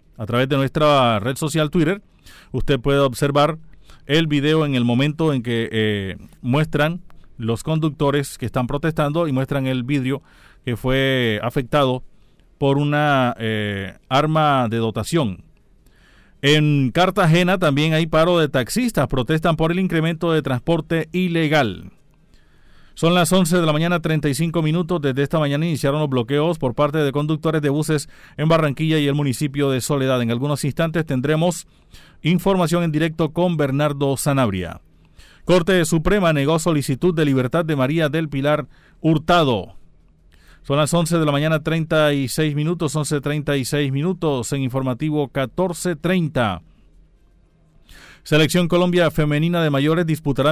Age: 40-59